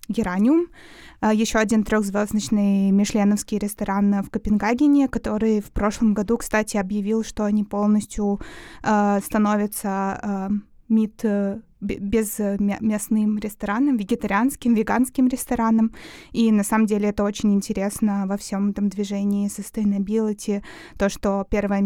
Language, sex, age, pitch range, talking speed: Russian, female, 20-39, 205-225 Hz, 115 wpm